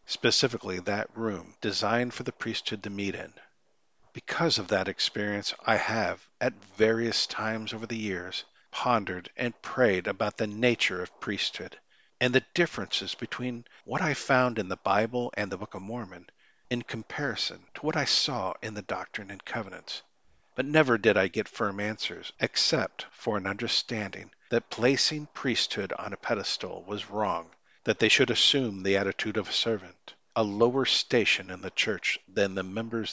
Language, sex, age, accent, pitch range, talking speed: English, male, 50-69, American, 100-120 Hz, 170 wpm